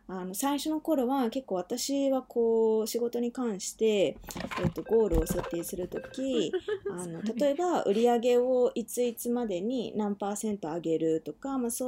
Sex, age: female, 20-39